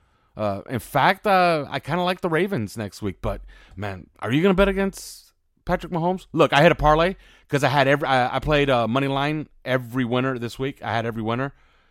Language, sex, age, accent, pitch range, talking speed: English, male, 30-49, American, 95-130 Hz, 225 wpm